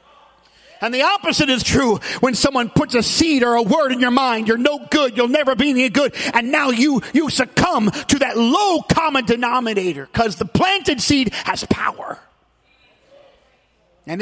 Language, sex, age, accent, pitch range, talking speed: English, male, 40-59, American, 205-260 Hz, 175 wpm